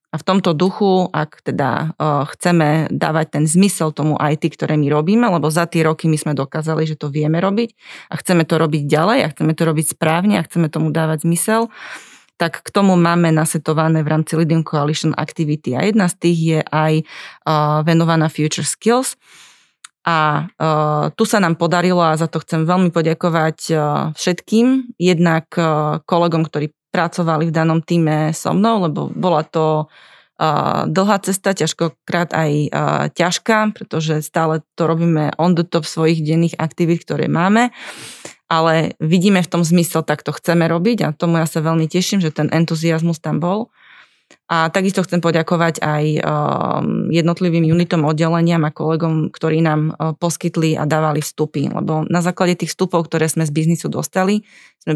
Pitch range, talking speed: 155-175 Hz, 160 wpm